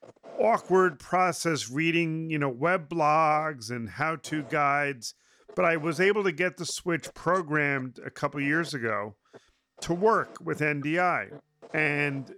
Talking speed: 140 wpm